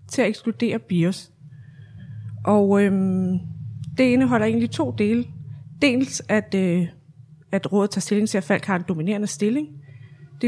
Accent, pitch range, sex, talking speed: native, 175-220 Hz, female, 150 wpm